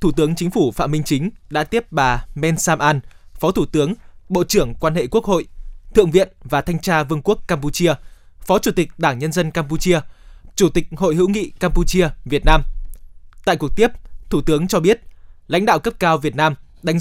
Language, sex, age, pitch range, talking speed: Vietnamese, male, 20-39, 145-180 Hz, 205 wpm